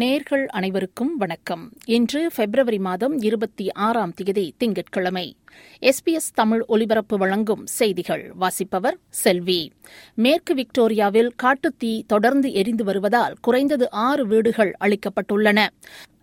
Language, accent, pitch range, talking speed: Tamil, native, 210-255 Hz, 85 wpm